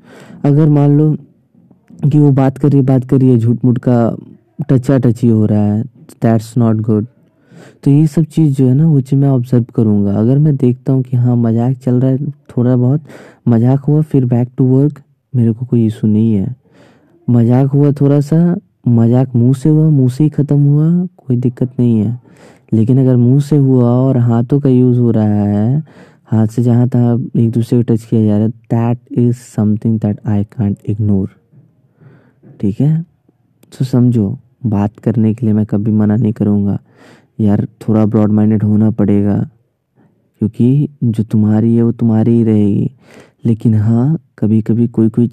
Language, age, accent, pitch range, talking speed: Hindi, 20-39, native, 110-140 Hz, 185 wpm